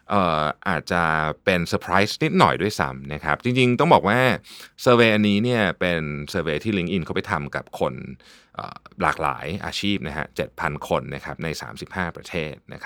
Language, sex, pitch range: Thai, male, 85-120 Hz